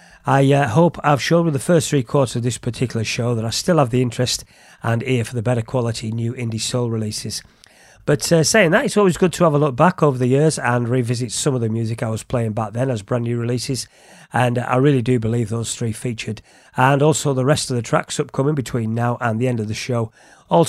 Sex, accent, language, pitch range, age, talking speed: male, British, English, 115-150 Hz, 40-59, 250 wpm